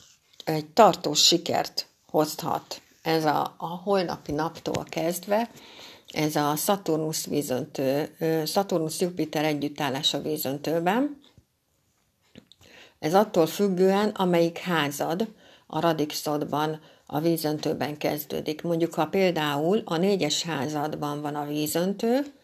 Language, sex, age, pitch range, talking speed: Hungarian, female, 60-79, 150-185 Hz, 100 wpm